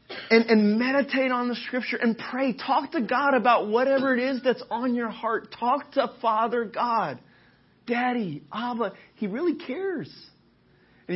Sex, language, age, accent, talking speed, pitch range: male, English, 30-49, American, 155 wpm, 160-255 Hz